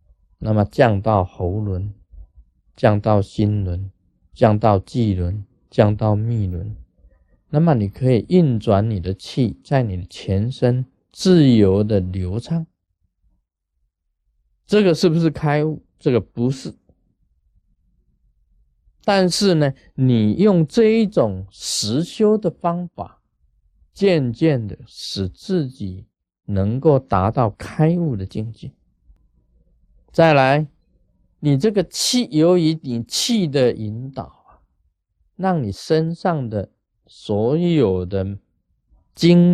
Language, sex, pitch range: Chinese, male, 95-155 Hz